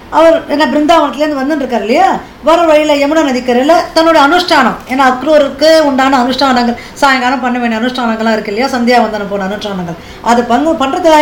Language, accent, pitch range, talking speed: Tamil, native, 215-285 Hz, 160 wpm